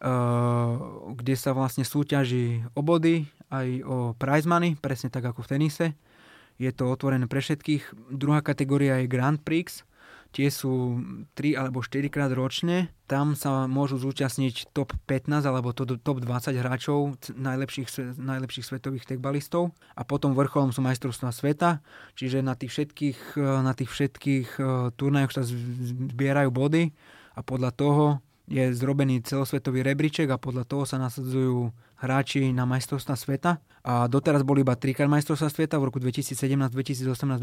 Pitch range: 130-145 Hz